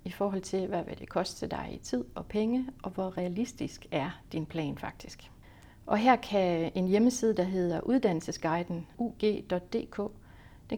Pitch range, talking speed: 165-215 Hz, 160 wpm